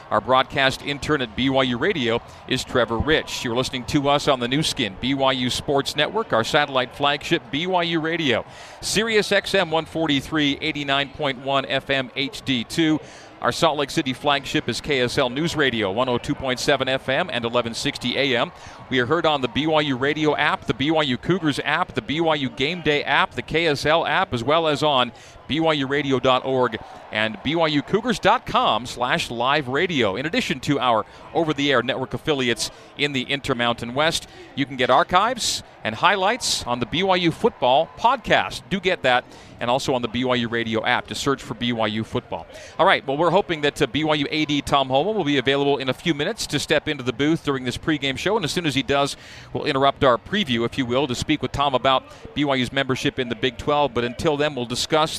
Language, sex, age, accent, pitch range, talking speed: English, male, 40-59, American, 125-155 Hz, 180 wpm